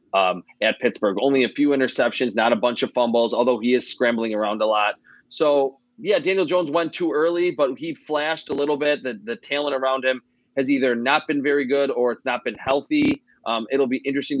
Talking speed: 215 wpm